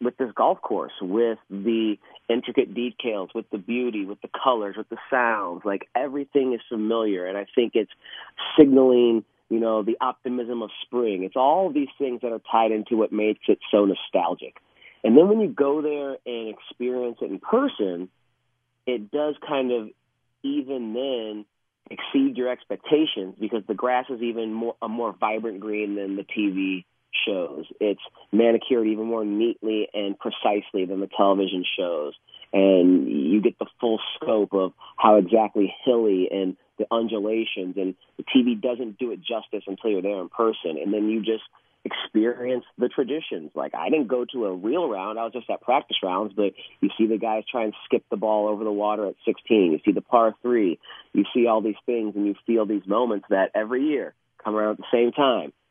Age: 30-49